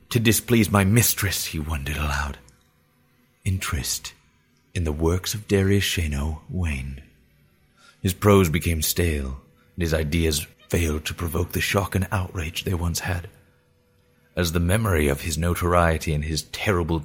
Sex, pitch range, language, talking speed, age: male, 80-100 Hz, English, 145 wpm, 30-49